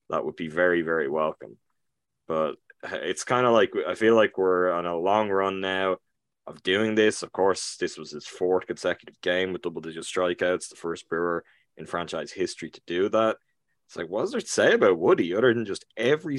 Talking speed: 205 wpm